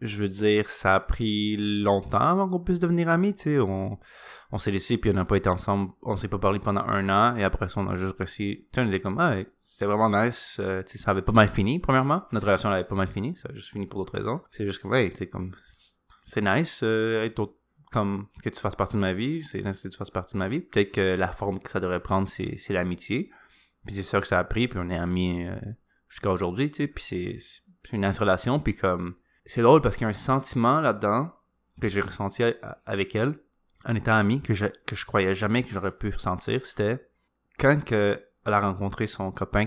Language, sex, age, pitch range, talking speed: French, male, 20-39, 95-120 Hz, 250 wpm